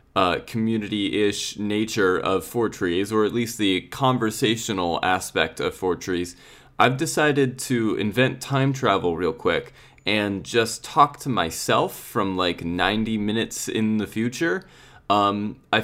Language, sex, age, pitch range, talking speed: English, male, 20-39, 105-125 Hz, 140 wpm